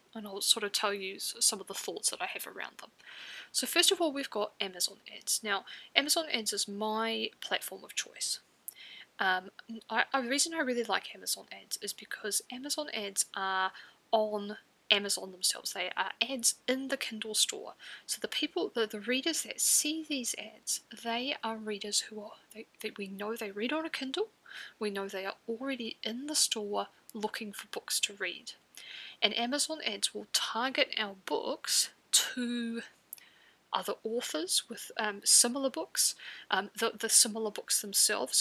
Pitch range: 205-265 Hz